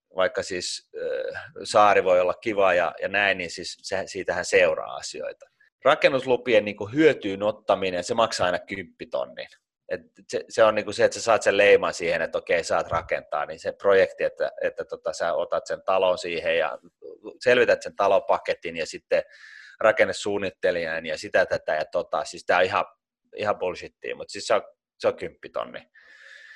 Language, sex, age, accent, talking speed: Finnish, male, 30-49, native, 170 wpm